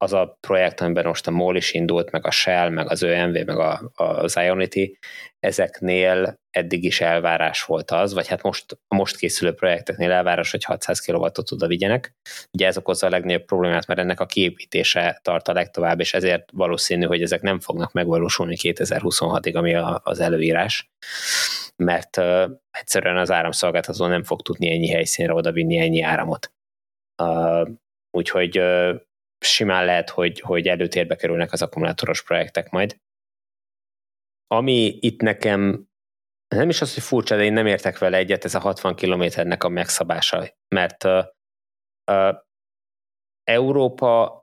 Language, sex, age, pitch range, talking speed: Hungarian, male, 20-39, 85-100 Hz, 155 wpm